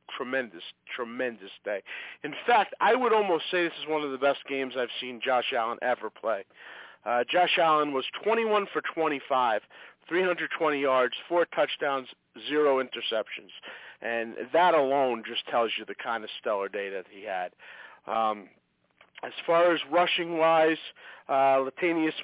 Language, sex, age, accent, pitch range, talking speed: English, male, 40-59, American, 135-180 Hz, 160 wpm